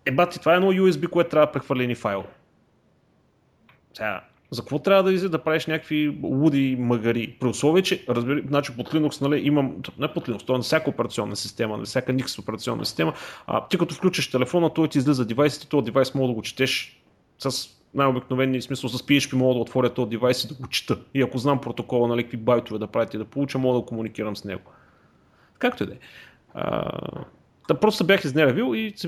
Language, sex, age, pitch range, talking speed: Bulgarian, male, 30-49, 120-155 Hz, 210 wpm